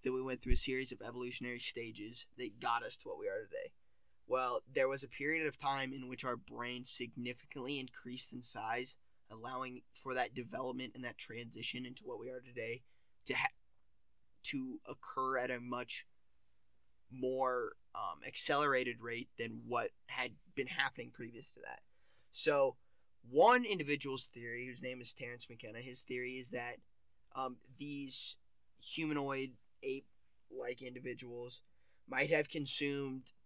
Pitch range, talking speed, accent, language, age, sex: 120-135 Hz, 150 wpm, American, English, 20-39, male